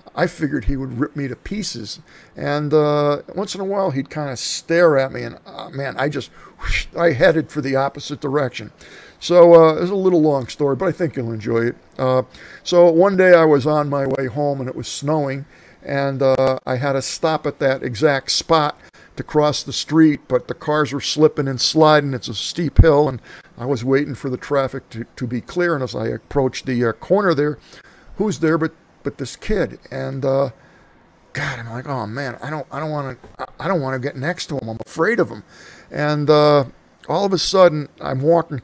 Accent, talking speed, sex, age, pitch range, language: American, 220 wpm, male, 50-69, 135-160 Hz, English